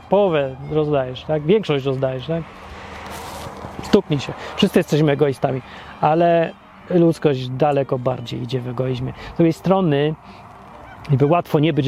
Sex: male